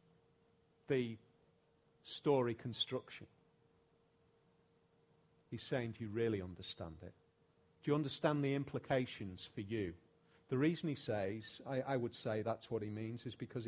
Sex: male